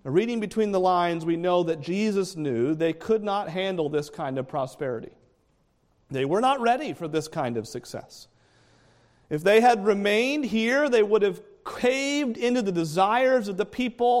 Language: English